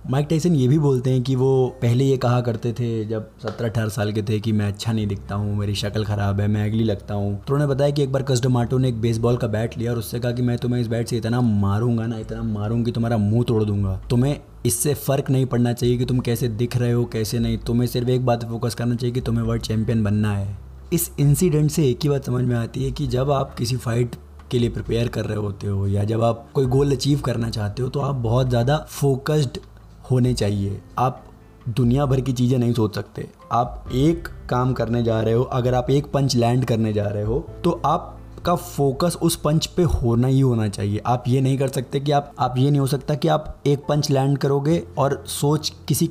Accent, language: native, Hindi